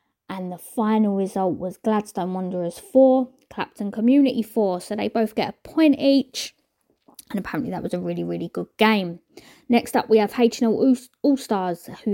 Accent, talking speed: British, 175 wpm